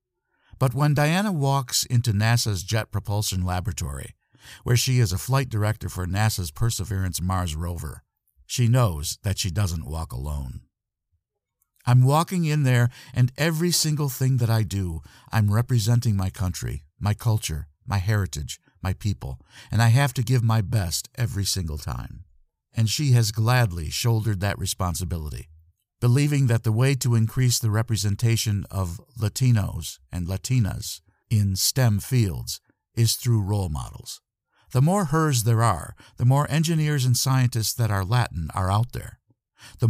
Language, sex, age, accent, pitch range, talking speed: English, male, 50-69, American, 95-120 Hz, 150 wpm